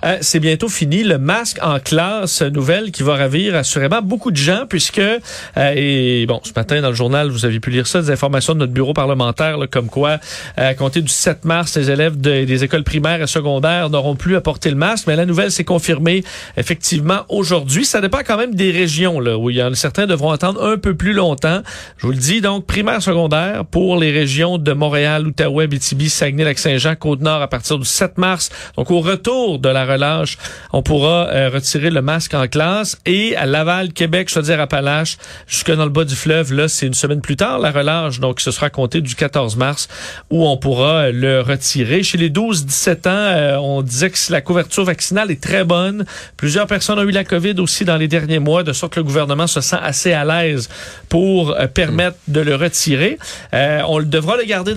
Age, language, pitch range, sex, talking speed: 40-59, French, 140-180 Hz, male, 225 wpm